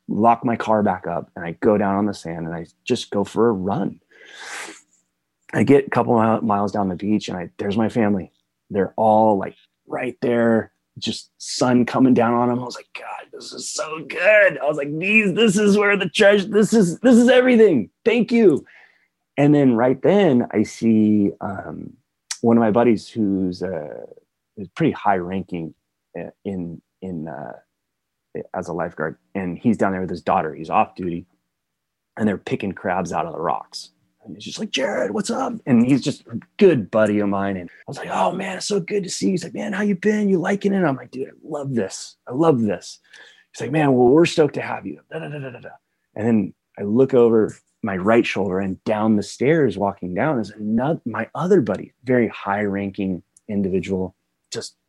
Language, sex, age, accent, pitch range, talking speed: English, male, 30-49, American, 95-160 Hz, 205 wpm